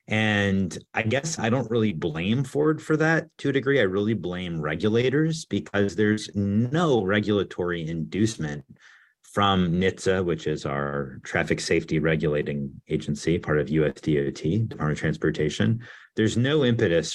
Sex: male